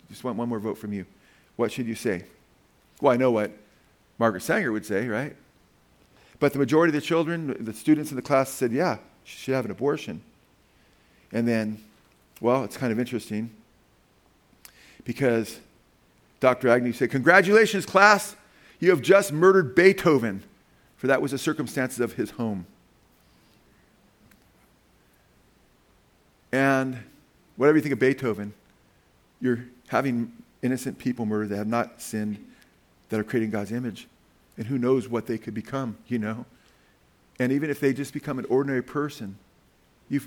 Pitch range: 110-140 Hz